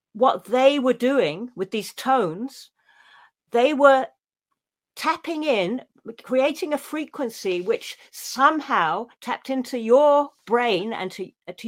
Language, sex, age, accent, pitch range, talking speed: English, female, 50-69, British, 195-260 Hz, 120 wpm